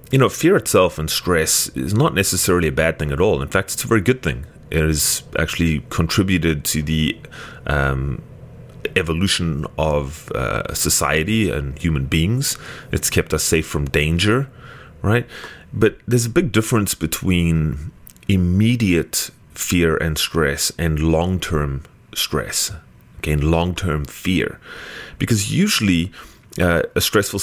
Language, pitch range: English, 75-95 Hz